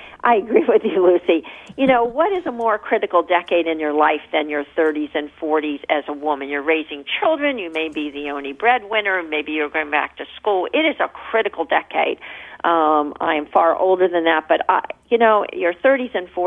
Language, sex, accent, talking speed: English, female, American, 210 wpm